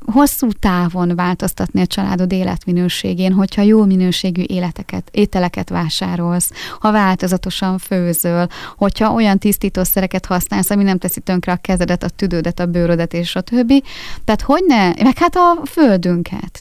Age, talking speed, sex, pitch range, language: 30-49, 135 wpm, female, 180-210 Hz, Hungarian